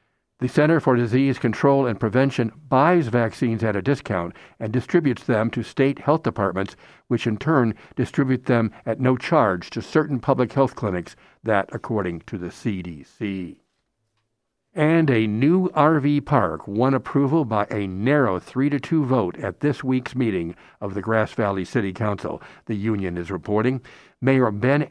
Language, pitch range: English, 110-135 Hz